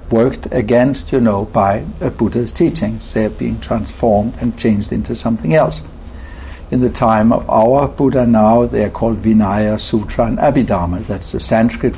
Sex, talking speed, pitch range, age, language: male, 160 wpm, 100-125 Hz, 60-79, English